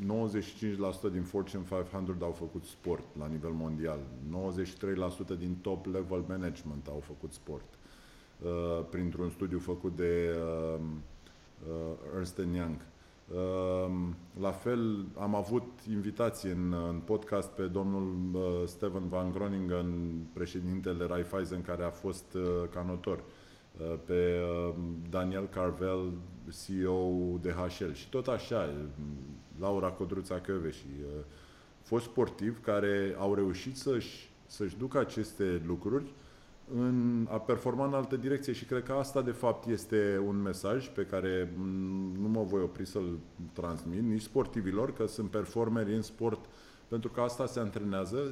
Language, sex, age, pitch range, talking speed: English, male, 20-39, 90-110 Hz, 135 wpm